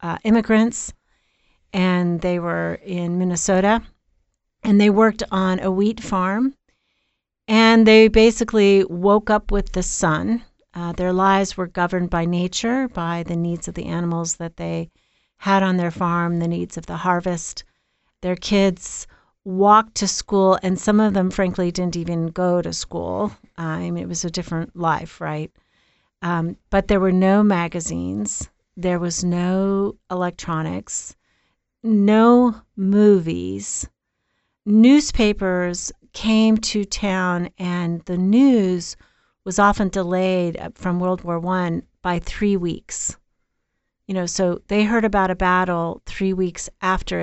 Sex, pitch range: female, 175-205 Hz